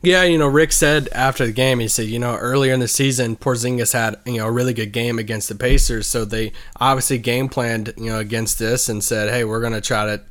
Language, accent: English, American